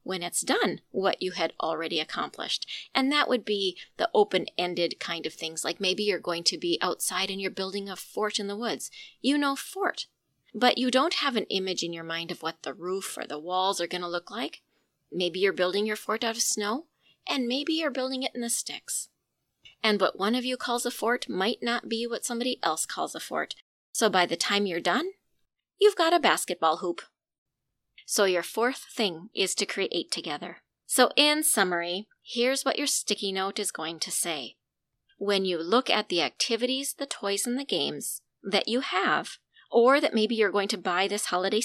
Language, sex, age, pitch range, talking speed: English, female, 30-49, 180-245 Hz, 205 wpm